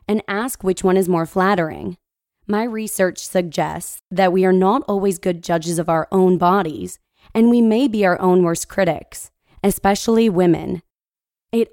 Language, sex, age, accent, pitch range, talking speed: English, female, 20-39, American, 170-210 Hz, 165 wpm